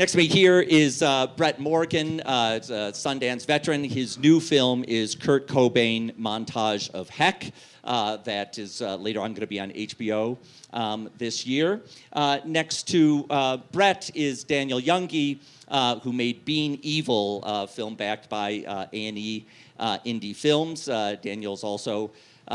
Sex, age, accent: male, 40-59, American